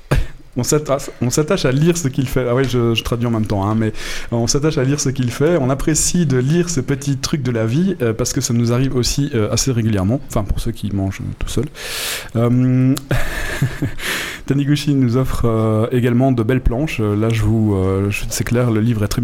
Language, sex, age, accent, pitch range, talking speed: French, male, 20-39, French, 110-130 Hz, 210 wpm